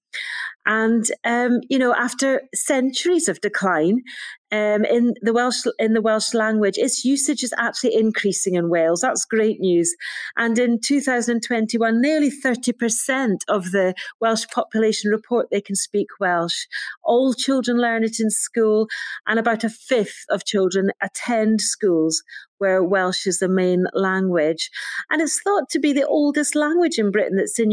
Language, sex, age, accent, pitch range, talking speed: English, female, 40-59, British, 185-240 Hz, 160 wpm